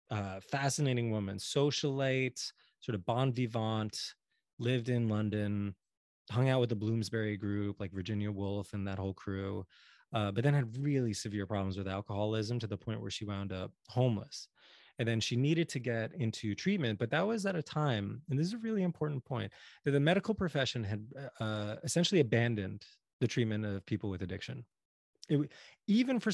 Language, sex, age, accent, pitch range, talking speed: English, male, 20-39, American, 100-130 Hz, 180 wpm